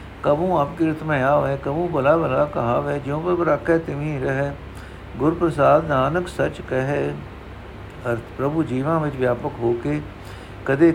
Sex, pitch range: male, 120-155 Hz